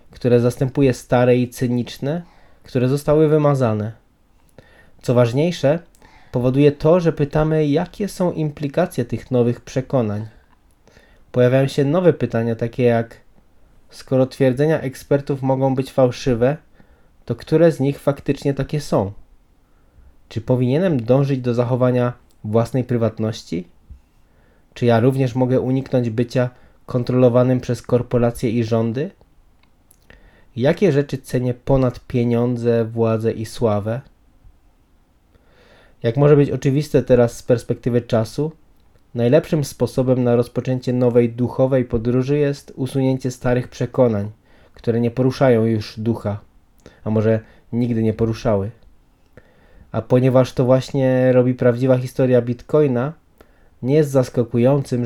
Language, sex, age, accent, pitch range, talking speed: Polish, male, 20-39, native, 115-135 Hz, 115 wpm